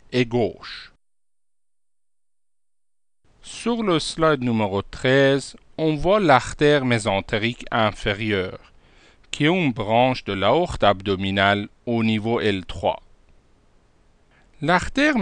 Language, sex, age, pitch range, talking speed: French, male, 50-69, 105-150 Hz, 90 wpm